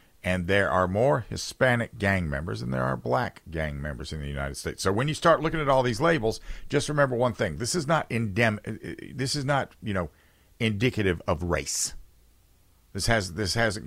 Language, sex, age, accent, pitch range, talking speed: English, male, 50-69, American, 85-125 Hz, 200 wpm